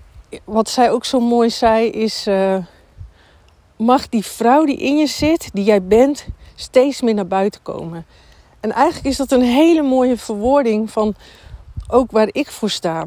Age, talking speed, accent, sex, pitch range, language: 50-69, 170 wpm, Dutch, female, 195-260 Hz, Dutch